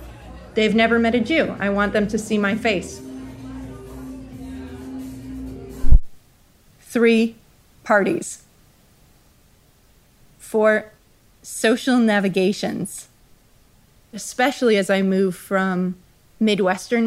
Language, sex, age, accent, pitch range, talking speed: English, female, 30-49, American, 185-230 Hz, 80 wpm